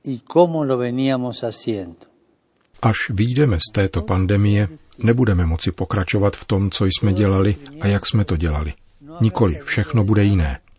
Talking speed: 120 wpm